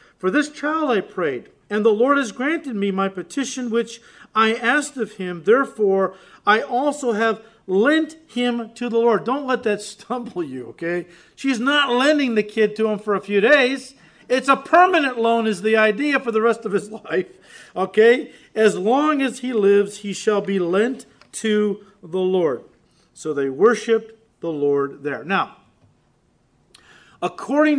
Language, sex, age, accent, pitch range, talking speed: English, male, 50-69, American, 190-245 Hz, 170 wpm